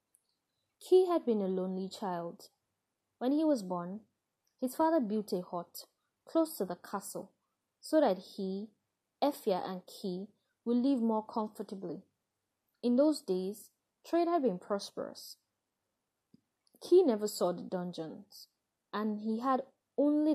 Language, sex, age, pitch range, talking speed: English, female, 20-39, 190-255 Hz, 135 wpm